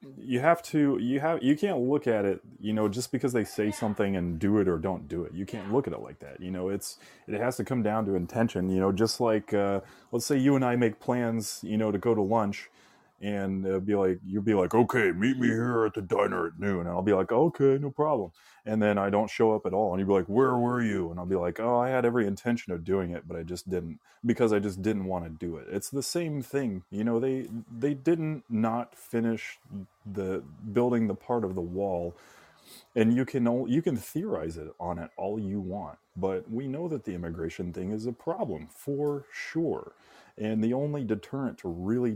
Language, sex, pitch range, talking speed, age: English, male, 95-120 Hz, 240 wpm, 30-49